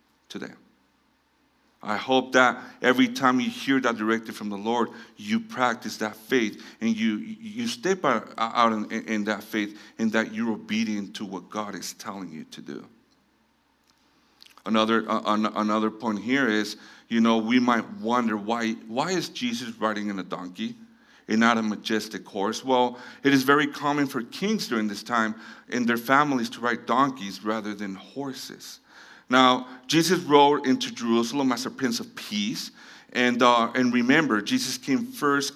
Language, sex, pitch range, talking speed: English, male, 110-165 Hz, 160 wpm